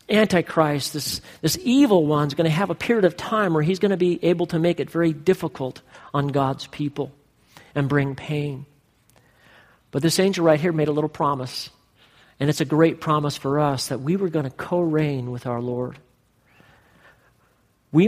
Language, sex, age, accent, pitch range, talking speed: English, male, 40-59, American, 140-170 Hz, 185 wpm